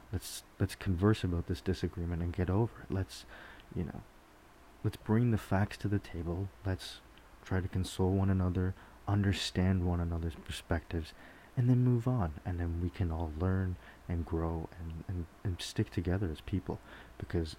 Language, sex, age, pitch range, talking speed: English, male, 30-49, 80-95 Hz, 170 wpm